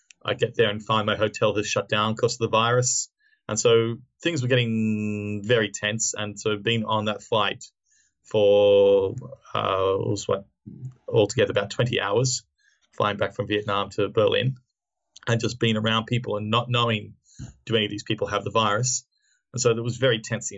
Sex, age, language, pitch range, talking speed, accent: male, 20-39, English, 105-125 Hz, 190 wpm, Australian